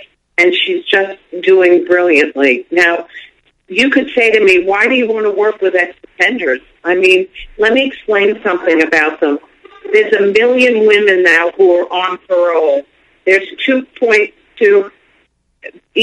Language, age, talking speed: English, 50-69, 140 wpm